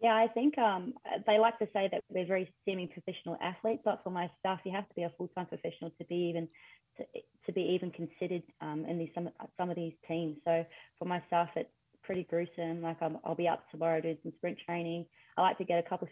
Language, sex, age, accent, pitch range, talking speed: English, female, 20-39, Australian, 165-190 Hz, 245 wpm